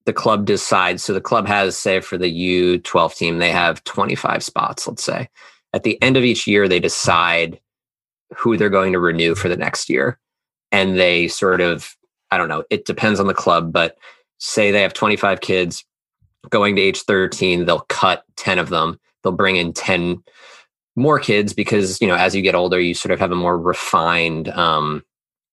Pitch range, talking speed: 85-100 Hz, 195 wpm